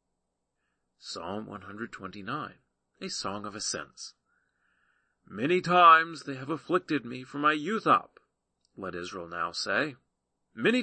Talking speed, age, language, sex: 115 wpm, 40-59, English, male